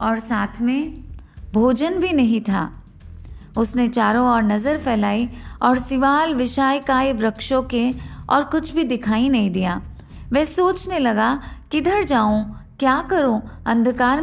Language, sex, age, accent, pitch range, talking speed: Hindi, female, 20-39, native, 220-275 Hz, 110 wpm